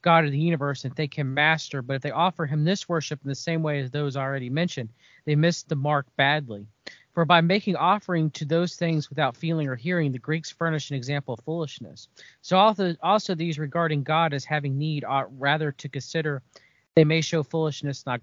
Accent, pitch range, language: American, 140-165 Hz, English